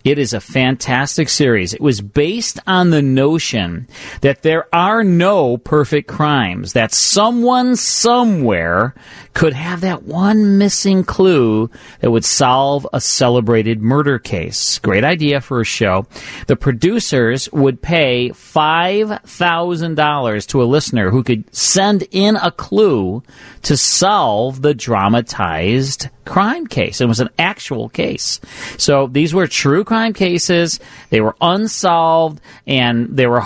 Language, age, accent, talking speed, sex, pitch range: English, 40-59, American, 135 wpm, male, 120-170 Hz